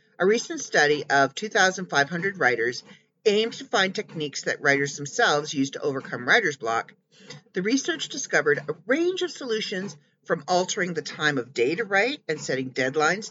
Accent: American